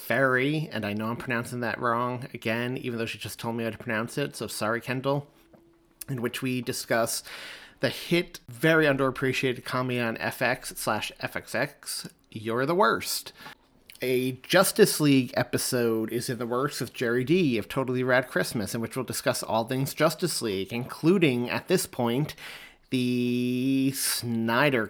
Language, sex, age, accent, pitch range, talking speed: English, male, 30-49, American, 120-145 Hz, 160 wpm